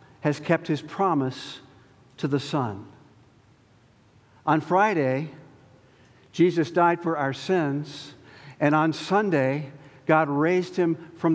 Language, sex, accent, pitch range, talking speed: English, male, American, 140-195 Hz, 110 wpm